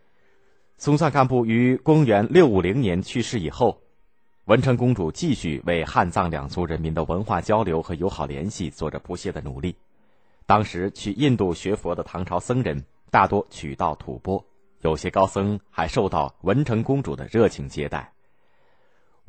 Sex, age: male, 30-49